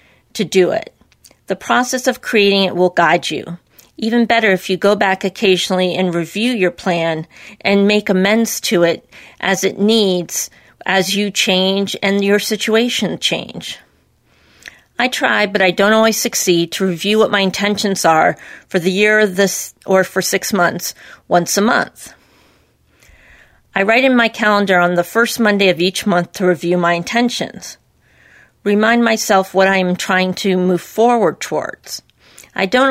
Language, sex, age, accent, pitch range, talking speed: English, female, 40-59, American, 185-225 Hz, 165 wpm